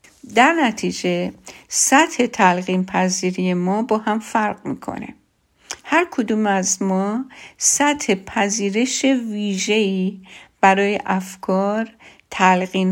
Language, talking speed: Persian, 95 wpm